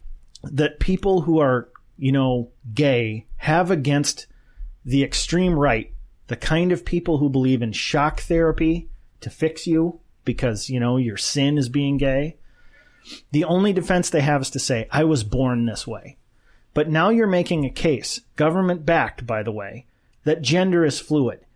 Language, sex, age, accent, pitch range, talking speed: English, male, 30-49, American, 135-180 Hz, 165 wpm